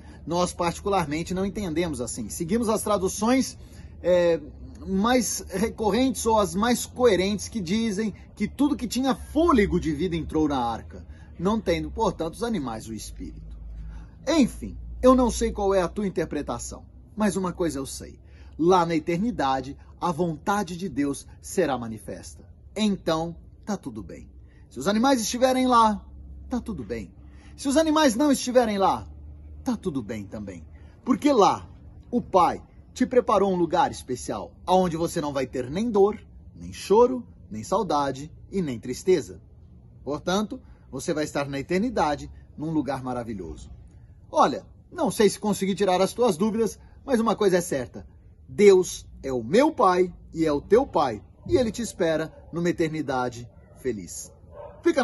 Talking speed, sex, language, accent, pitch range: 155 wpm, male, Portuguese, Brazilian, 130-215 Hz